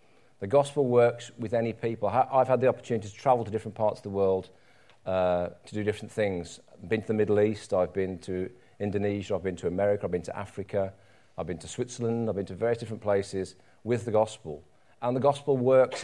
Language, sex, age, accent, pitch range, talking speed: English, male, 40-59, British, 105-130 Hz, 215 wpm